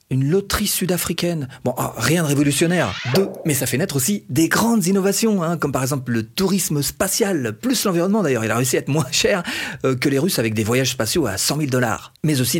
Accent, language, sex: French, French, male